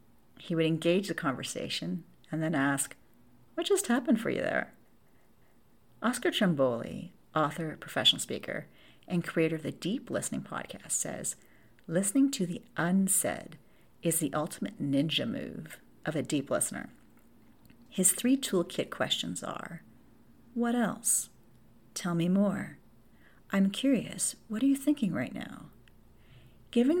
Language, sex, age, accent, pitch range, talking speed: English, female, 40-59, American, 165-230 Hz, 130 wpm